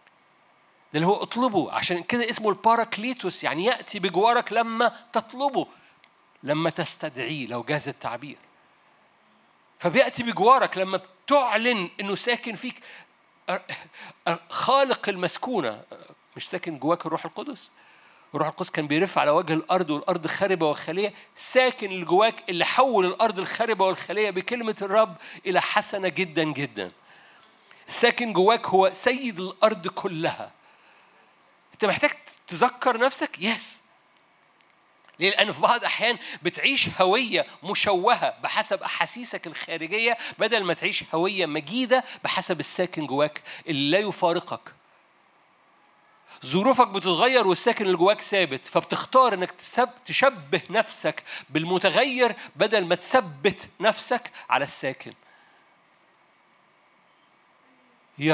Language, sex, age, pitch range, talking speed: Arabic, male, 50-69, 175-235 Hz, 110 wpm